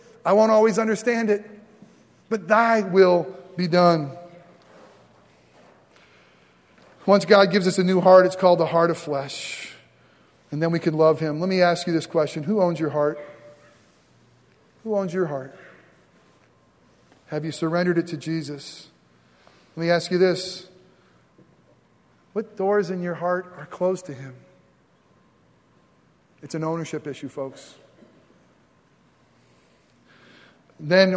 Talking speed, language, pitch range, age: 135 wpm, English, 170-210 Hz, 40-59